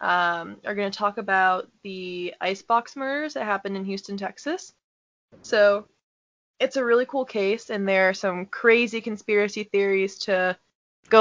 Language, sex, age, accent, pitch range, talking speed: English, female, 20-39, American, 190-225 Hz, 155 wpm